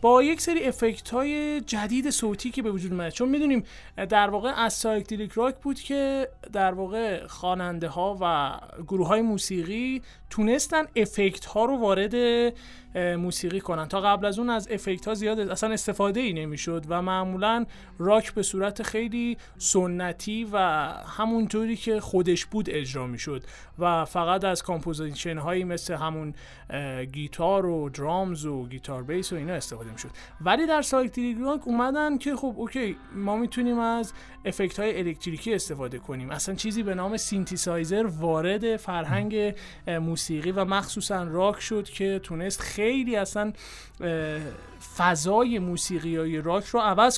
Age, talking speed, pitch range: 30-49, 150 wpm, 170-225 Hz